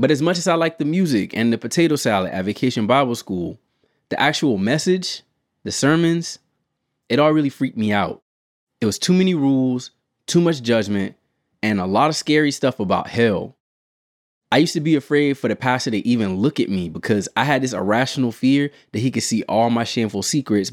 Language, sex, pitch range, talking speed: English, male, 105-145 Hz, 205 wpm